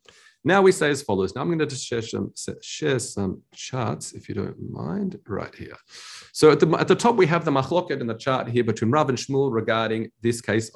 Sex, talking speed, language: male, 235 wpm, English